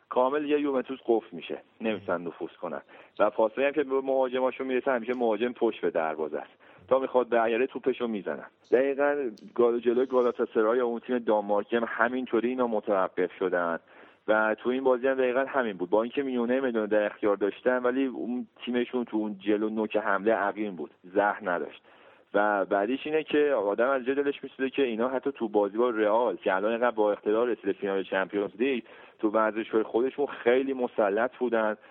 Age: 40-59